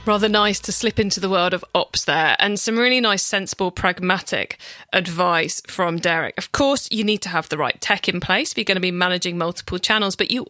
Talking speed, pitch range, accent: 230 wpm, 180-235 Hz, British